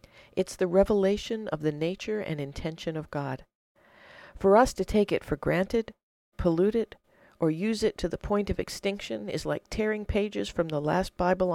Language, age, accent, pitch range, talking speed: English, 50-69, American, 145-185 Hz, 180 wpm